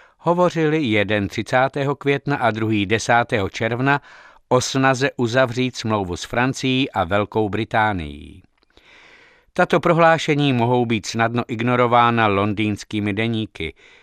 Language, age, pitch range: Czech, 60-79, 110-135 Hz